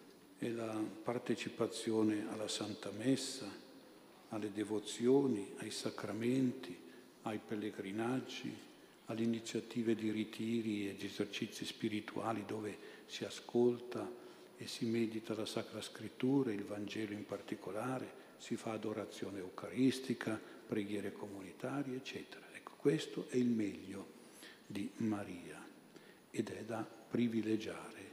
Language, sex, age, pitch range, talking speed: Italian, male, 50-69, 105-125 Hz, 110 wpm